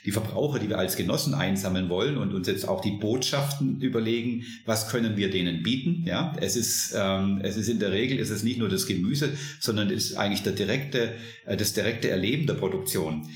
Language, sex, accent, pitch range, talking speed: German, male, German, 100-120 Hz, 205 wpm